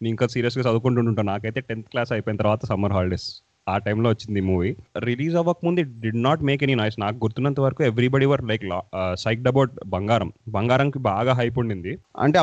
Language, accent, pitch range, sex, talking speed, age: Telugu, native, 110-130 Hz, male, 185 wpm, 30-49